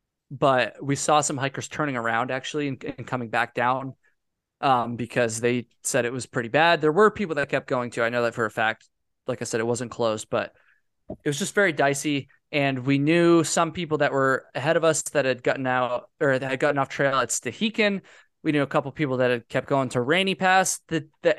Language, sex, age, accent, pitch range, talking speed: English, male, 20-39, American, 120-150 Hz, 230 wpm